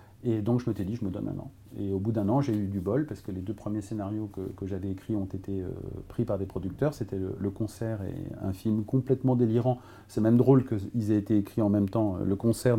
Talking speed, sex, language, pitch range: 265 wpm, male, French, 95-120 Hz